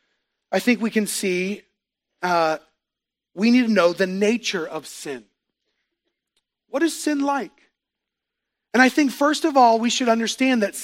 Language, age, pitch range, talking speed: English, 40-59, 205-265 Hz, 155 wpm